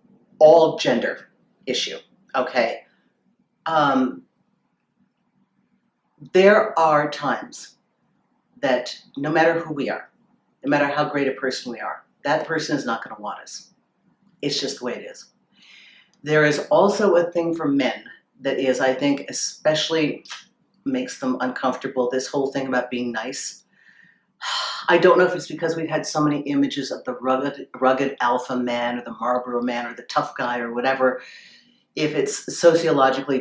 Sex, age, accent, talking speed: female, 40-59, American, 155 wpm